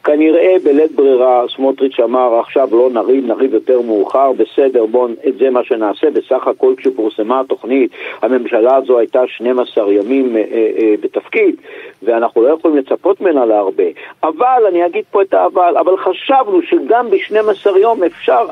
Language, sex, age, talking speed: Hebrew, male, 50-69, 150 wpm